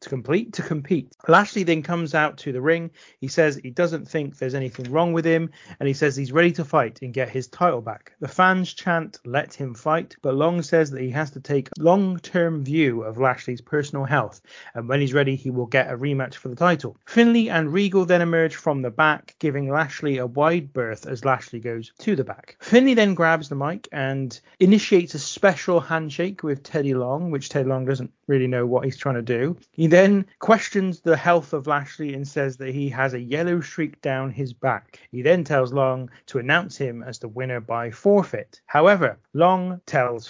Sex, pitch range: male, 130-170 Hz